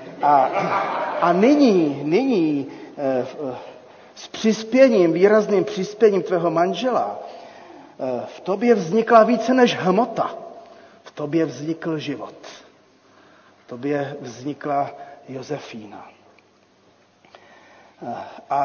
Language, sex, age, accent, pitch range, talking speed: Czech, male, 40-59, native, 165-215 Hz, 80 wpm